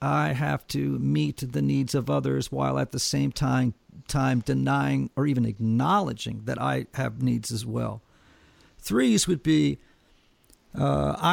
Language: English